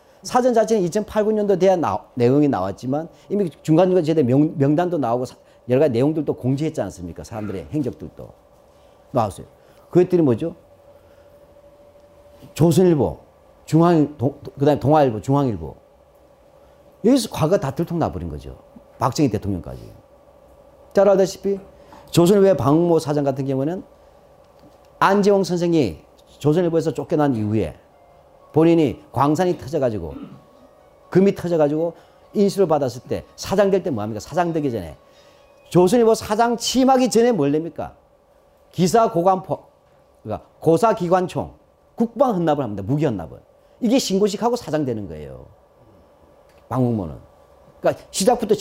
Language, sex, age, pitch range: Korean, male, 40-59, 135-205 Hz